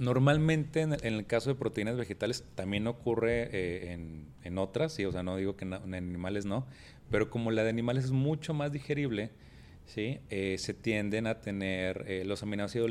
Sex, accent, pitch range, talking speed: male, Mexican, 95-125 Hz, 185 wpm